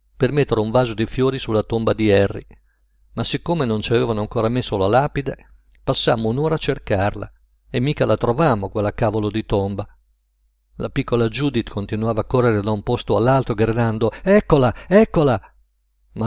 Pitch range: 100-125 Hz